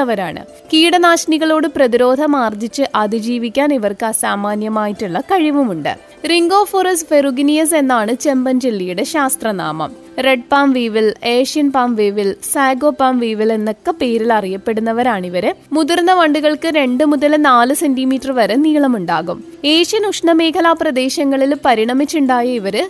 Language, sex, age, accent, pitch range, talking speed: Malayalam, female, 20-39, native, 230-305 Hz, 95 wpm